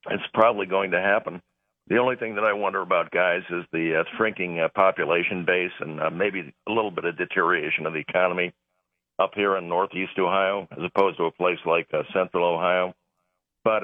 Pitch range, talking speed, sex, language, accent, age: 85-100 Hz, 200 wpm, male, English, American, 50-69